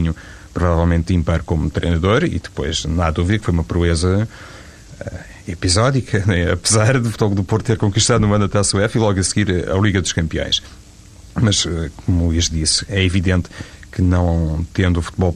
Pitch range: 85-100 Hz